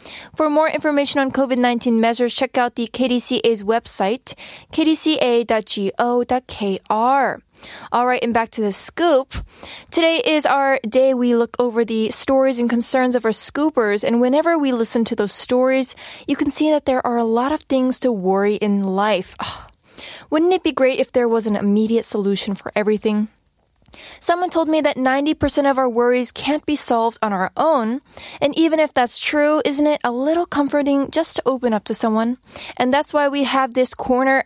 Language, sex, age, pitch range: Korean, female, 10-29, 225-285 Hz